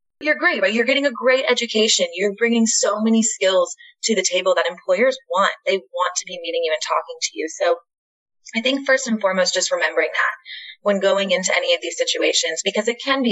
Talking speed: 220 wpm